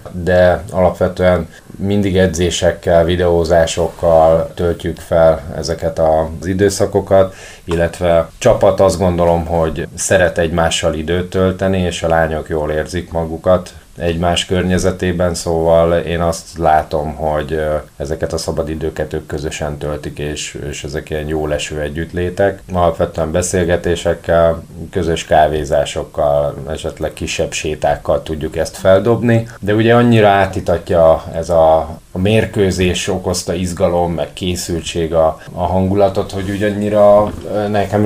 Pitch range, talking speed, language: 80-95 Hz, 115 wpm, Hungarian